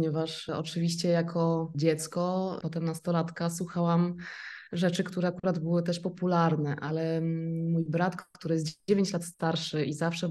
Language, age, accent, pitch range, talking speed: Polish, 20-39, native, 165-195 Hz, 135 wpm